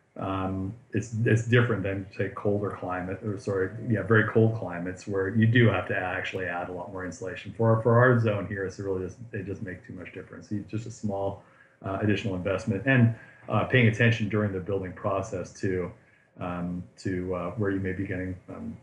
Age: 40-59